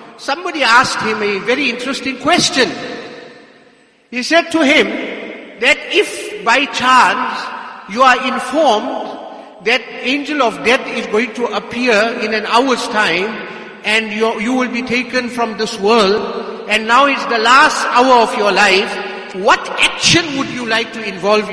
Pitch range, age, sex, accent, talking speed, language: 200-245 Hz, 50-69, male, Indian, 155 wpm, English